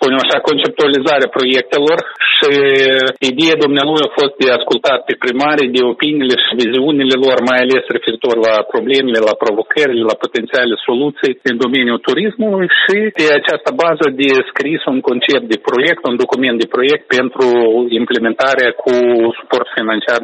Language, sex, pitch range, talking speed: Romanian, male, 120-155 Hz, 140 wpm